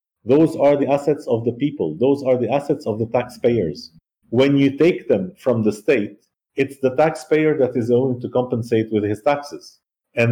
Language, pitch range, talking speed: English, 115-150 Hz, 190 wpm